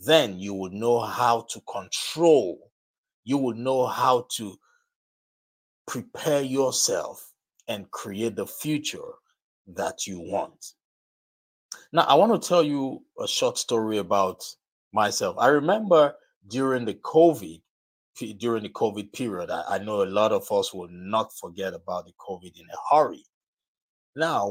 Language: English